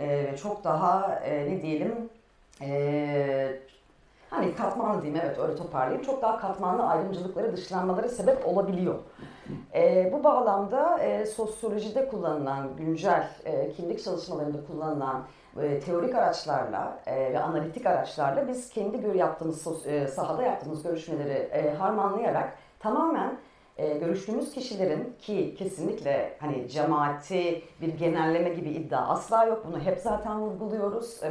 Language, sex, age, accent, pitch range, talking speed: Turkish, female, 40-59, native, 150-215 Hz, 120 wpm